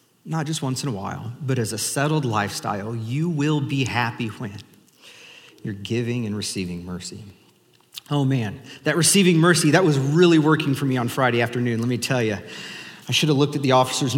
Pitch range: 120-155 Hz